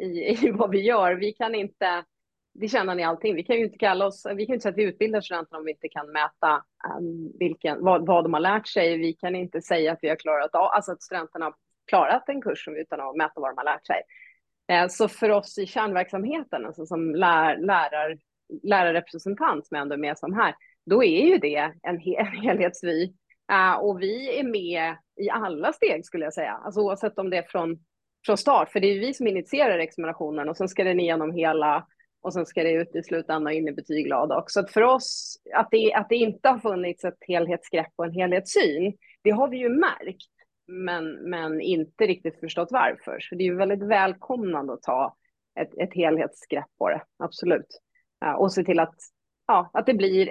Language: Swedish